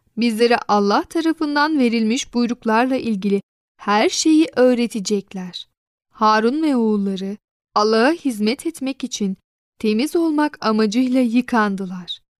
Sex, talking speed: female, 95 wpm